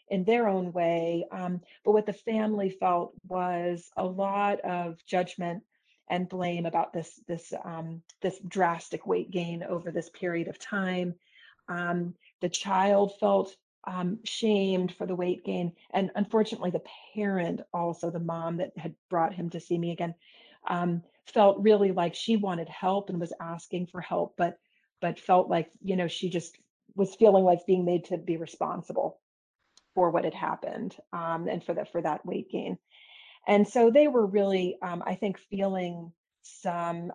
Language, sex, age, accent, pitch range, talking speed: English, female, 40-59, American, 175-200 Hz, 170 wpm